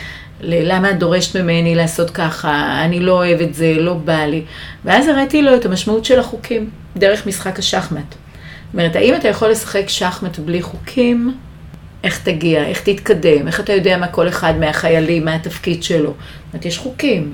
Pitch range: 160-195 Hz